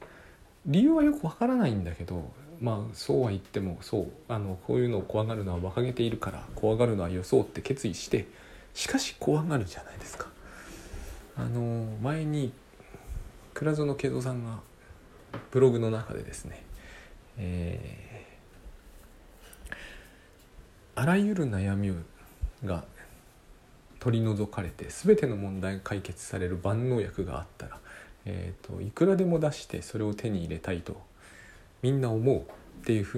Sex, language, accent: male, Japanese, native